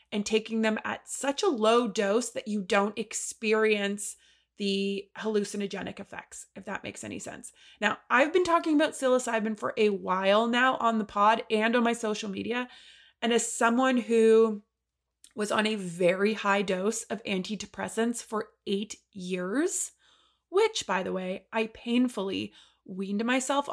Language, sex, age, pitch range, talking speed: English, female, 20-39, 205-255 Hz, 155 wpm